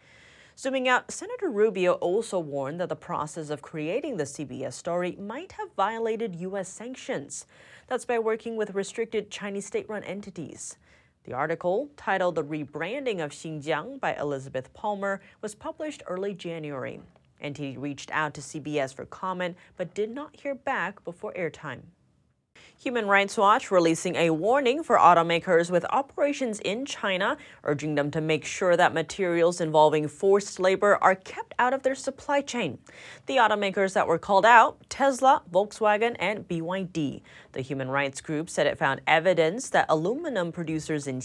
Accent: American